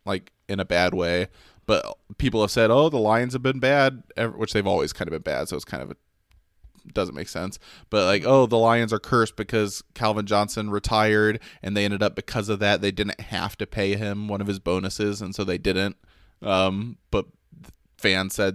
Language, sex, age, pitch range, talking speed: English, male, 20-39, 95-110 Hz, 215 wpm